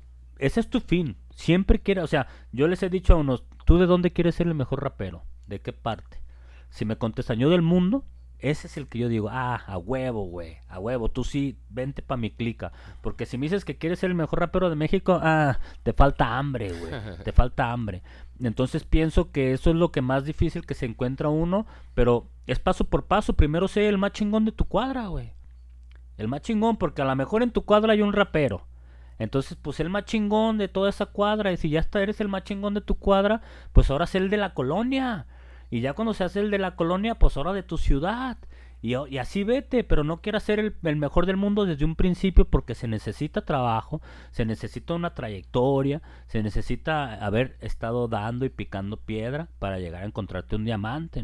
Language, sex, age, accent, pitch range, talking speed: Spanish, male, 30-49, Mexican, 115-180 Hz, 220 wpm